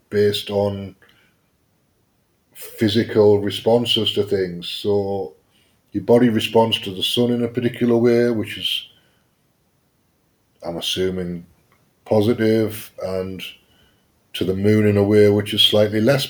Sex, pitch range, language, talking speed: male, 100-115 Hz, English, 120 wpm